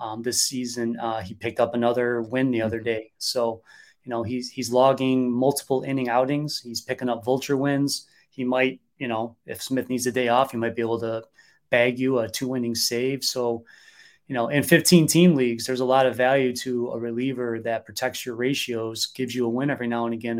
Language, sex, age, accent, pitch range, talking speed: English, male, 30-49, American, 115-130 Hz, 210 wpm